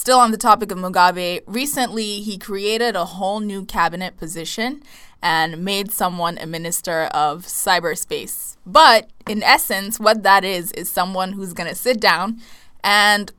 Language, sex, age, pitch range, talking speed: English, female, 20-39, 185-225 Hz, 155 wpm